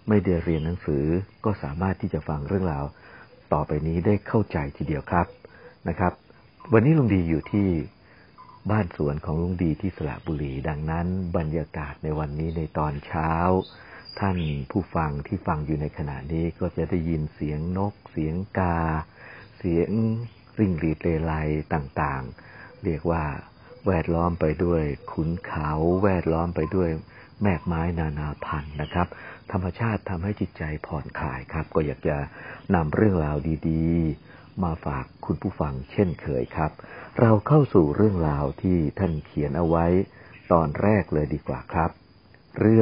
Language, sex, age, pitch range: Thai, male, 60-79, 80-100 Hz